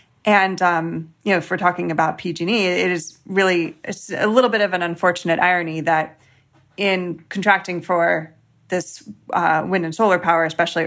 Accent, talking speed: American, 175 wpm